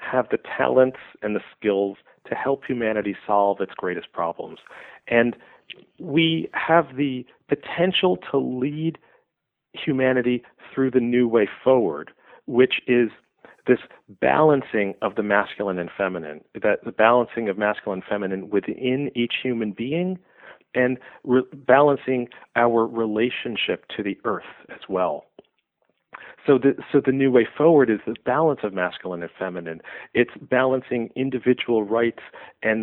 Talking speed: 135 wpm